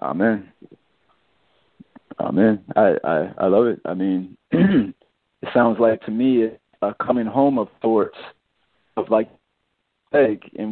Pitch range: 110-120 Hz